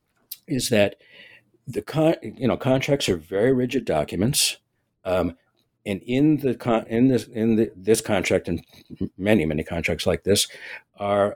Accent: American